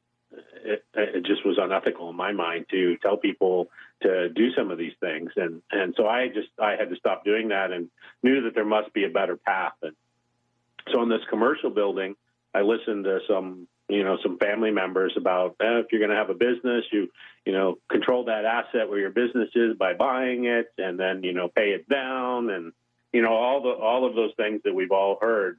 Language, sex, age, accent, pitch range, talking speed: English, male, 40-59, American, 95-120 Hz, 220 wpm